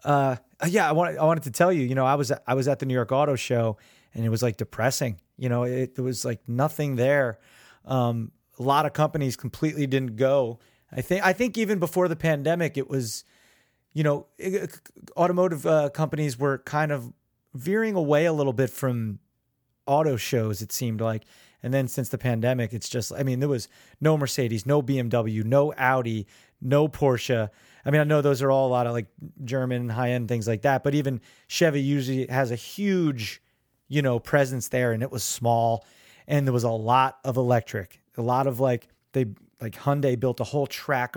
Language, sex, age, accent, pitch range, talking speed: English, male, 30-49, American, 120-150 Hz, 205 wpm